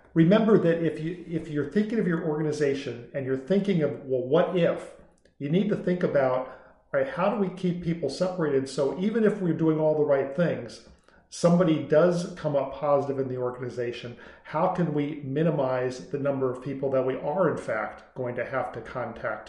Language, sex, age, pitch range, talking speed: English, male, 50-69, 135-165 Hz, 195 wpm